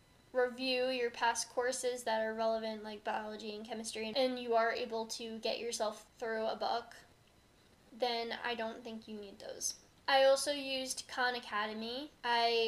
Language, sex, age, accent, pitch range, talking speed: English, female, 10-29, American, 225-255 Hz, 160 wpm